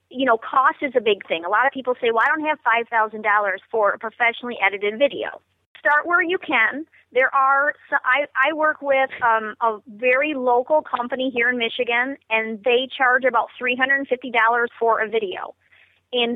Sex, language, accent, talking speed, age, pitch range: female, English, American, 180 wpm, 40-59, 230-285 Hz